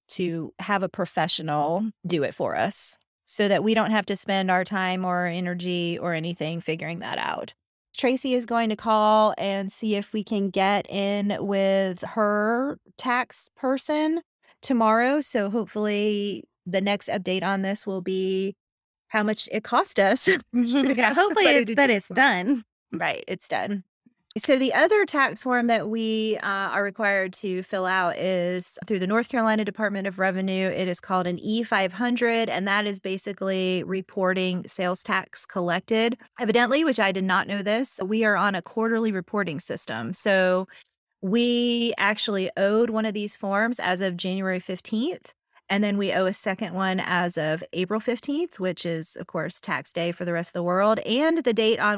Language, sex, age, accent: English, female, 30-49, American